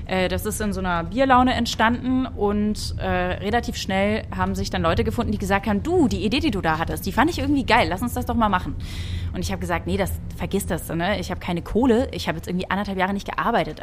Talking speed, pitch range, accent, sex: 250 wpm, 180-225 Hz, German, female